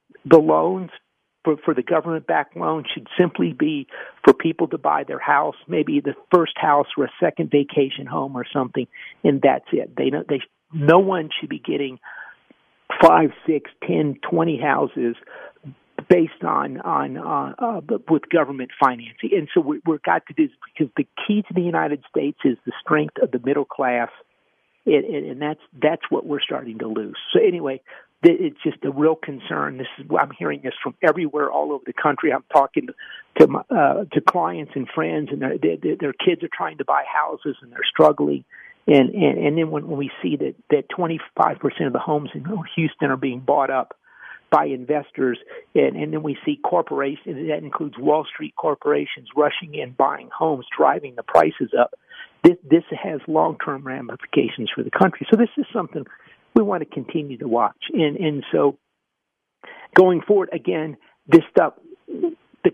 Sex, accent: male, American